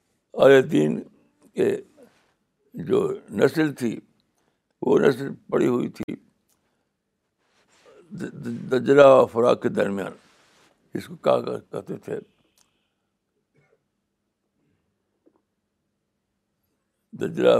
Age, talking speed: 60-79, 70 wpm